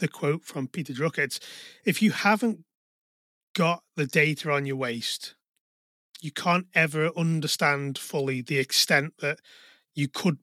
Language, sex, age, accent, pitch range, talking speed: English, male, 30-49, British, 140-170 Hz, 145 wpm